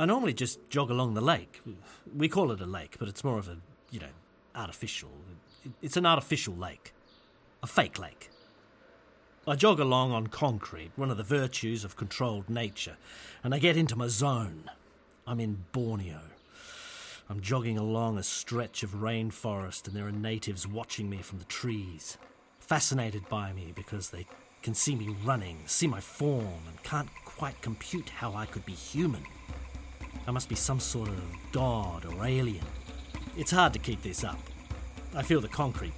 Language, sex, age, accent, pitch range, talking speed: English, male, 40-59, British, 90-130 Hz, 175 wpm